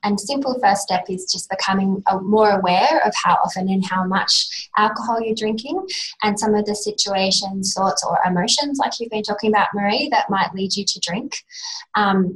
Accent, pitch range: Australian, 185-215 Hz